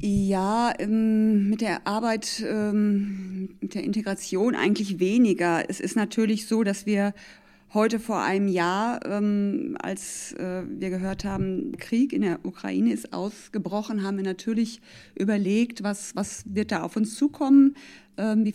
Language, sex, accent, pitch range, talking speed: German, female, German, 190-220 Hz, 135 wpm